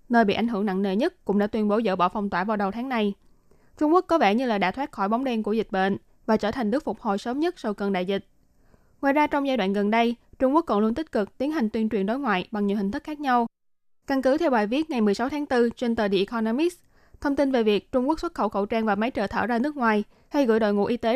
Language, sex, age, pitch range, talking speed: Vietnamese, female, 20-39, 210-270 Hz, 300 wpm